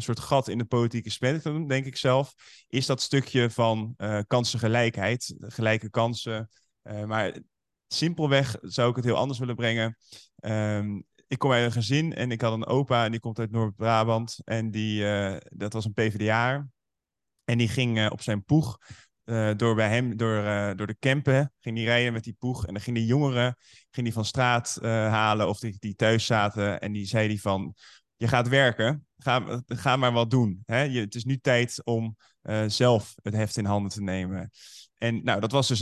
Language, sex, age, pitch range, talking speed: Dutch, male, 20-39, 110-125 Hz, 205 wpm